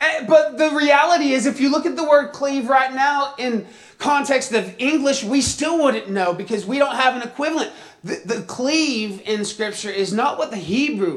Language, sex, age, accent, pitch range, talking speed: English, male, 30-49, American, 205-275 Hz, 200 wpm